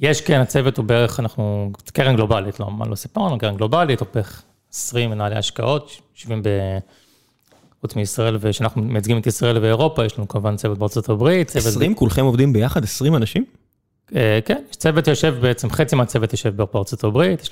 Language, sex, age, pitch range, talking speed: Hebrew, male, 30-49, 105-135 Hz, 170 wpm